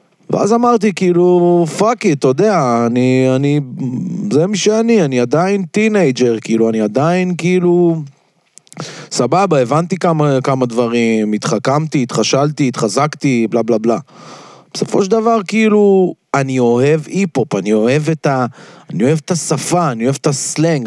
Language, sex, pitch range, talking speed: Hebrew, male, 130-180 Hz, 140 wpm